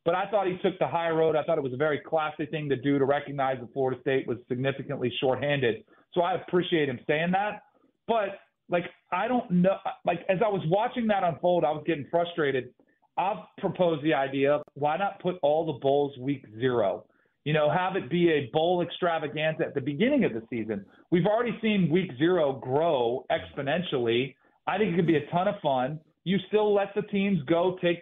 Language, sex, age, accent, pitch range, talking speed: English, male, 40-59, American, 150-195 Hz, 210 wpm